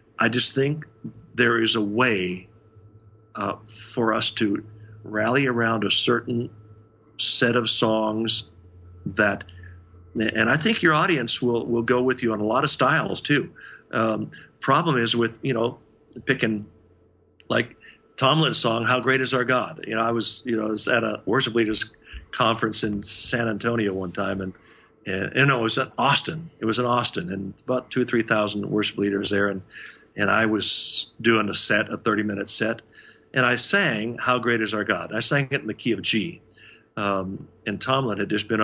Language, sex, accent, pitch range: English, male, American, 105-125 Hz